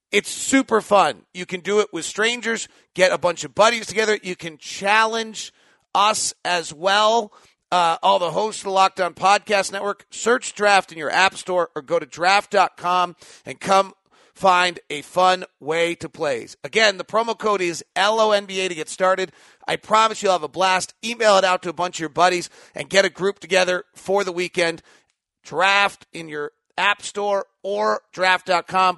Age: 40-59